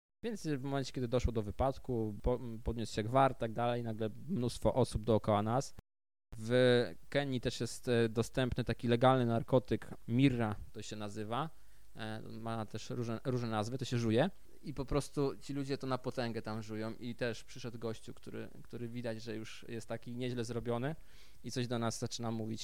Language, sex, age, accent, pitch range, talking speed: Polish, male, 20-39, native, 115-130 Hz, 175 wpm